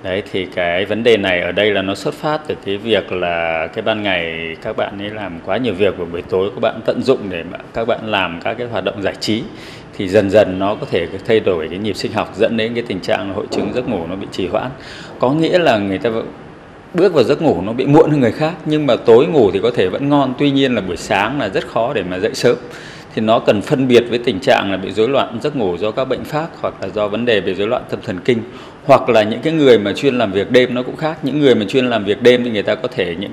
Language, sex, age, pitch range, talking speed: Vietnamese, male, 20-39, 105-140 Hz, 285 wpm